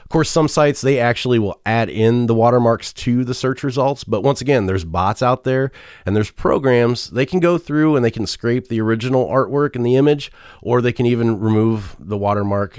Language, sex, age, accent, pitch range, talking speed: English, male, 30-49, American, 100-130 Hz, 210 wpm